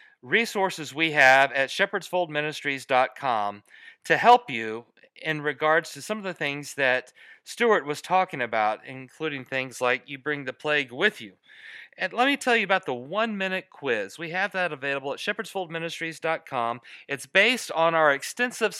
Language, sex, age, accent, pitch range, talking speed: English, male, 40-59, American, 140-190 Hz, 155 wpm